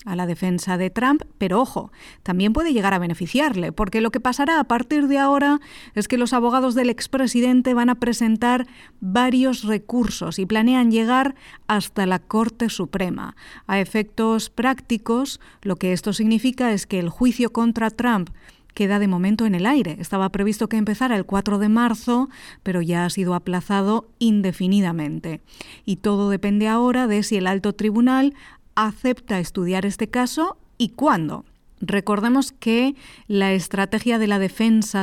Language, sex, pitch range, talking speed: English, female, 195-250 Hz, 160 wpm